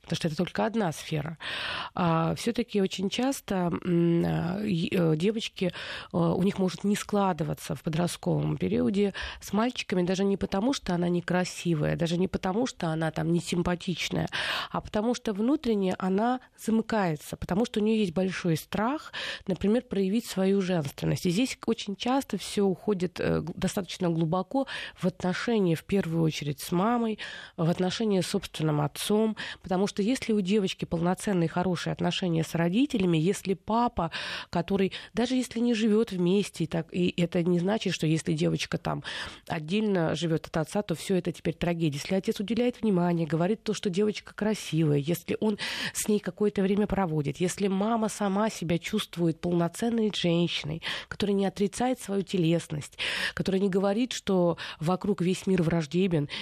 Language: Russian